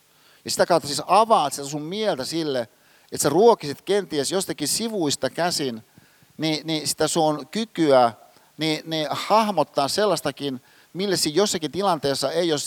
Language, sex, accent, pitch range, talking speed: Finnish, male, native, 135-175 Hz, 145 wpm